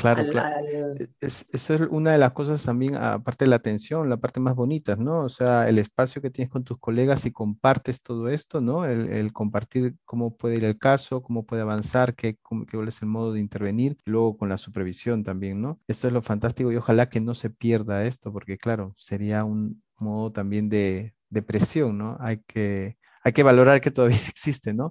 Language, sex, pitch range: Spanish, male, 110-130 Hz